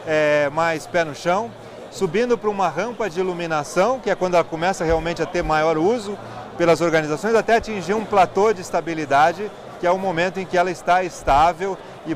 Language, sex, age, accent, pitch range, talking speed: Portuguese, male, 30-49, Brazilian, 165-210 Hz, 190 wpm